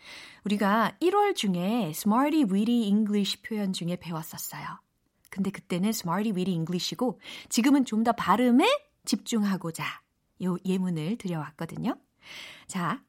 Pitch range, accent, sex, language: 175-245 Hz, native, female, Korean